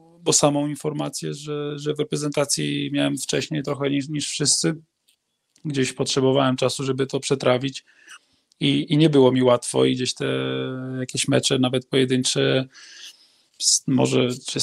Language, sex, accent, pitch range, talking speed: Polish, male, native, 125-140 Hz, 140 wpm